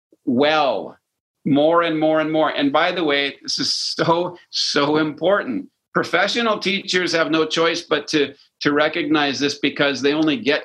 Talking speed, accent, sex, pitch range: 165 wpm, American, male, 155-215 Hz